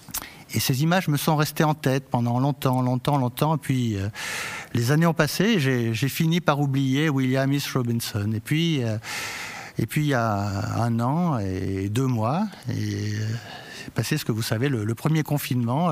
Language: French